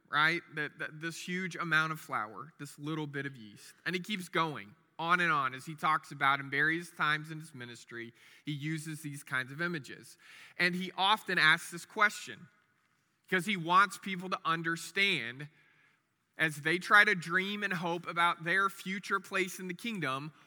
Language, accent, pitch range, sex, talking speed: English, American, 160-200 Hz, male, 175 wpm